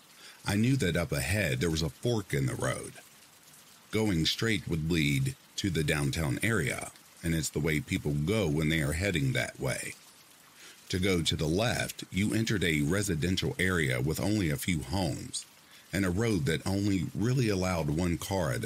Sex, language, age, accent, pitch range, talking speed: male, English, 50-69, American, 80-110 Hz, 185 wpm